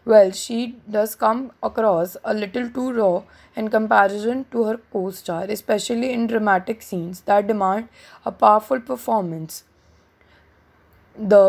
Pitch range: 195-235 Hz